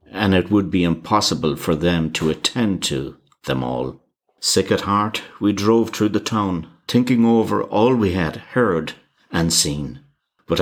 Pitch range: 85-110 Hz